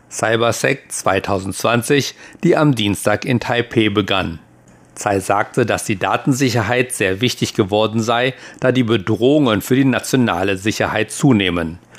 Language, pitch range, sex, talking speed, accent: German, 100-125 Hz, male, 125 wpm, German